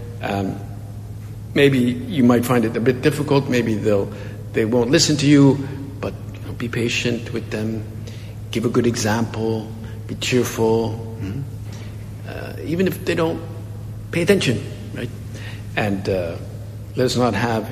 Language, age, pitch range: English, 60-79, 105-125 Hz